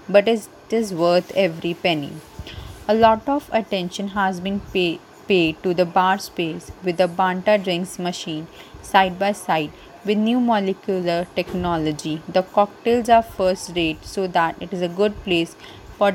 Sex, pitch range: female, 175-210 Hz